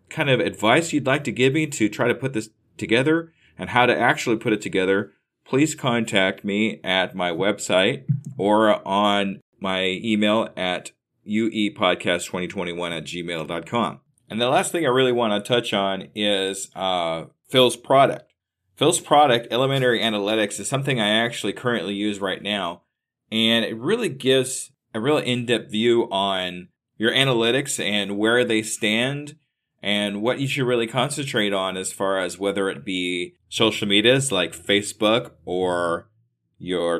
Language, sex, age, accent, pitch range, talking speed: English, male, 40-59, American, 100-125 Hz, 155 wpm